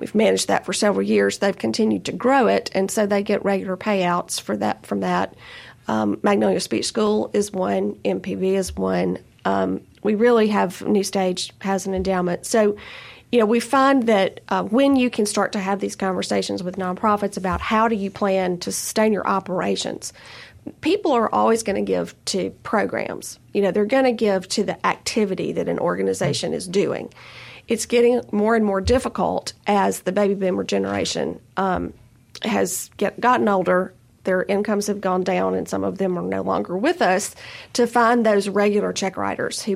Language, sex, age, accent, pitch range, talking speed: English, female, 40-59, American, 180-220 Hz, 185 wpm